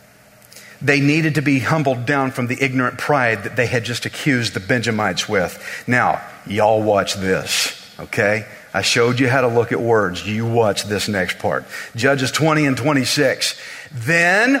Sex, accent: male, American